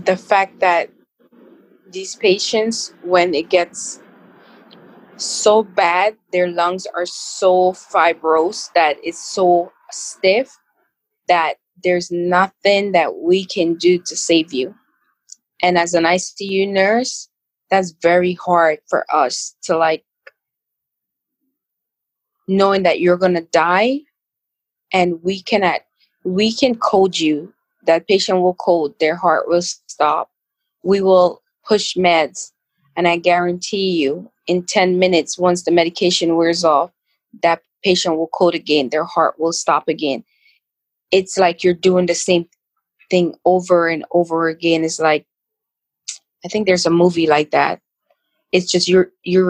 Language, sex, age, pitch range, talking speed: English, female, 20-39, 170-195 Hz, 130 wpm